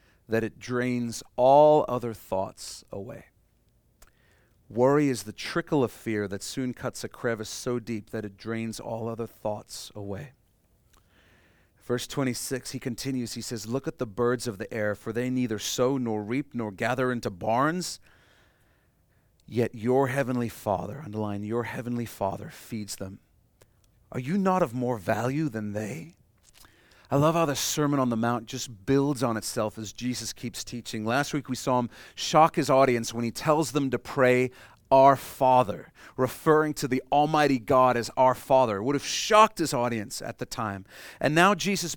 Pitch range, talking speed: 115-145 Hz, 170 wpm